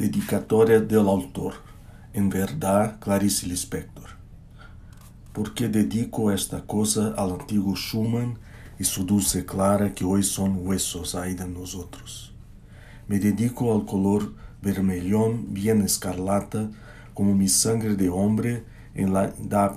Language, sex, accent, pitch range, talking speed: Portuguese, male, Brazilian, 95-110 Hz, 120 wpm